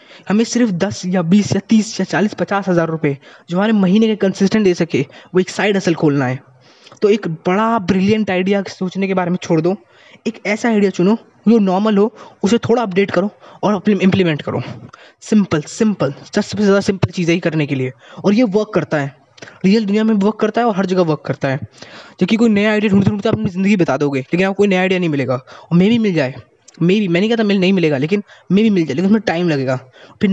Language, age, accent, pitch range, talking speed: Hindi, 20-39, native, 170-210 Hz, 235 wpm